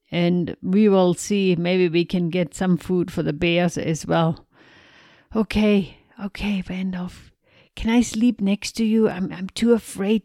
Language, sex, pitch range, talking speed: English, female, 175-215 Hz, 165 wpm